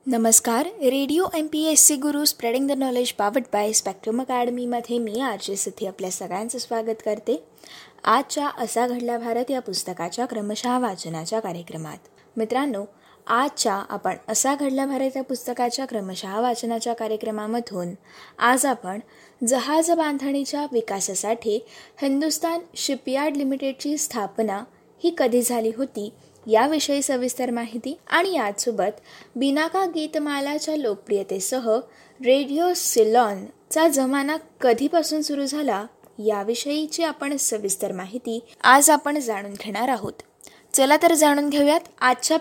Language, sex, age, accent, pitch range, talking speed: Marathi, female, 20-39, native, 225-295 Hz, 120 wpm